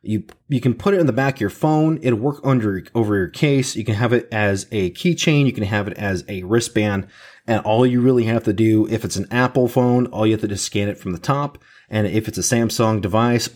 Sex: male